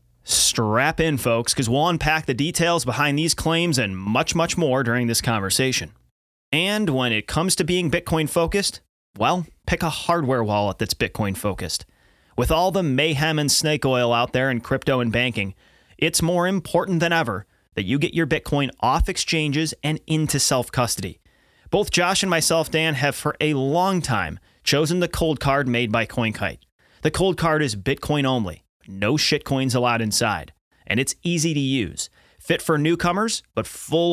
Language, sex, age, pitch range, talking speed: English, male, 30-49, 120-165 Hz, 170 wpm